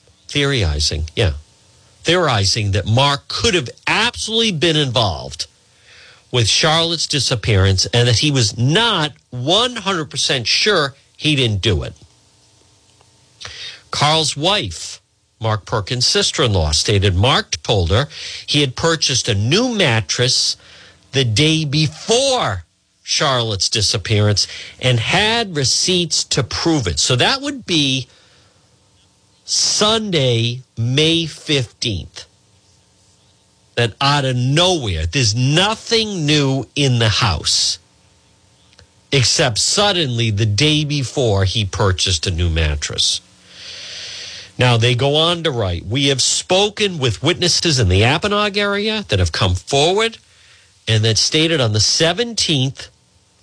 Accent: American